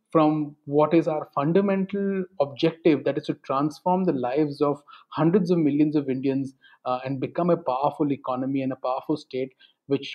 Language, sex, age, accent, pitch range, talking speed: English, male, 30-49, Indian, 145-190 Hz, 170 wpm